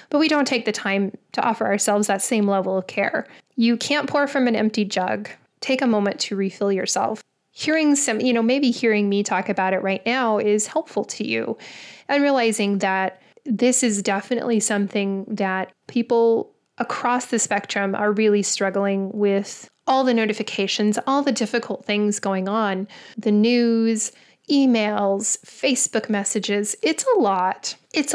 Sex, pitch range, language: female, 200-240 Hz, English